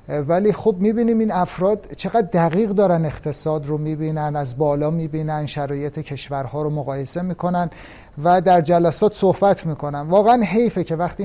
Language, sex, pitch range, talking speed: Persian, male, 145-180 Hz, 150 wpm